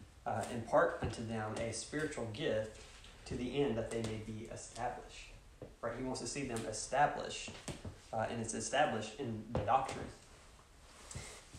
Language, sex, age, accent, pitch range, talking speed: English, male, 20-39, American, 110-130 Hz, 155 wpm